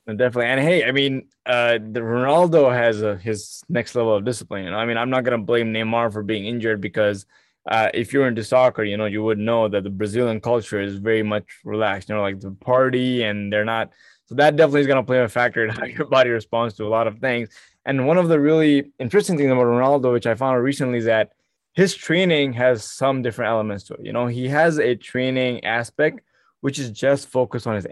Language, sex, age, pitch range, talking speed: English, male, 20-39, 110-135 Hz, 235 wpm